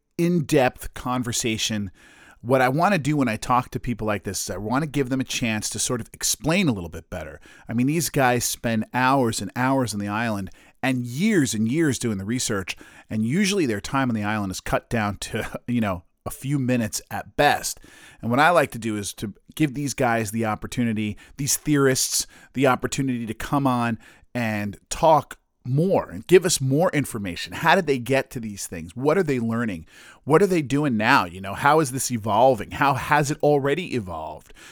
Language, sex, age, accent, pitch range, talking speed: English, male, 40-59, American, 105-135 Hz, 210 wpm